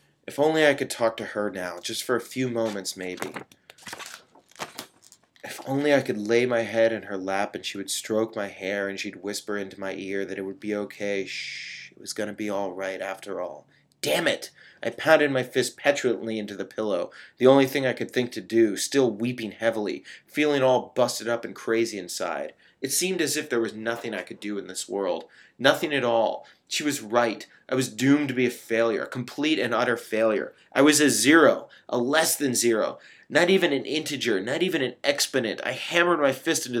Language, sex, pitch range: English, male, 110-140 Hz